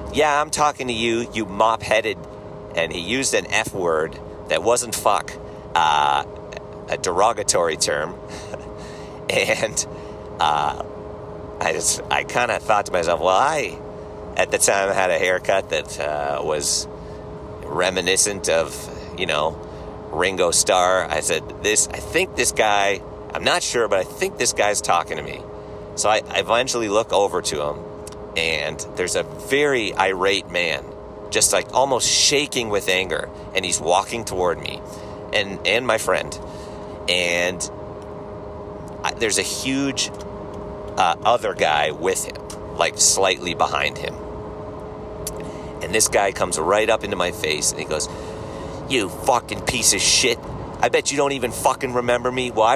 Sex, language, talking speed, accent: male, English, 150 wpm, American